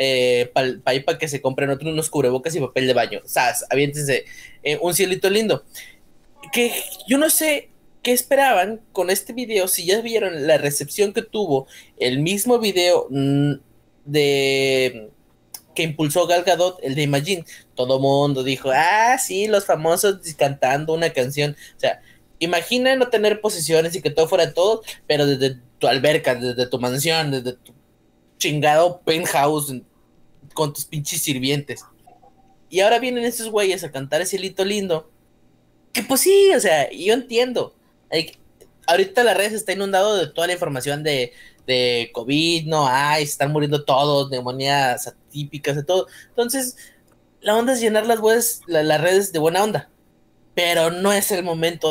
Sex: male